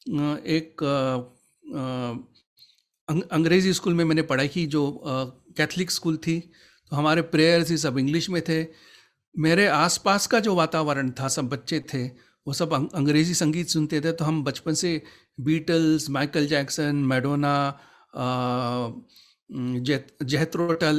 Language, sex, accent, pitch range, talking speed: Hindi, male, native, 140-175 Hz, 135 wpm